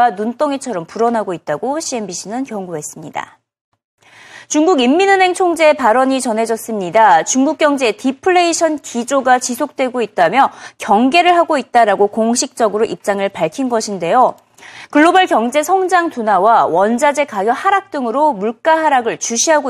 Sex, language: female, Korean